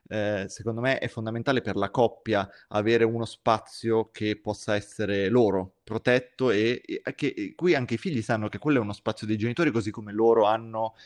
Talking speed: 195 wpm